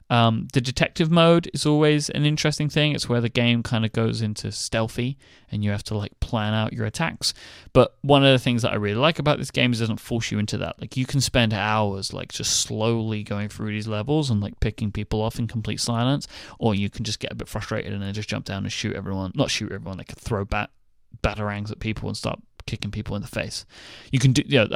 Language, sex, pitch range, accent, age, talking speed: English, male, 105-135 Hz, British, 20-39, 250 wpm